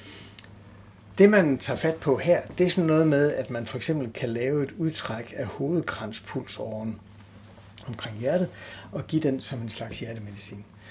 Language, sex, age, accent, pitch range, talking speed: Danish, male, 60-79, native, 105-135 Hz, 165 wpm